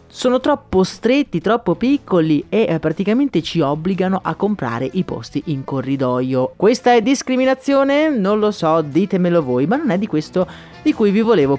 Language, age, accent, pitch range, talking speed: Italian, 30-49, native, 150-230 Hz, 170 wpm